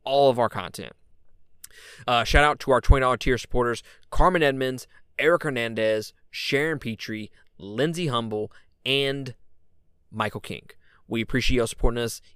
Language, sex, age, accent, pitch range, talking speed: English, male, 20-39, American, 110-140 Hz, 135 wpm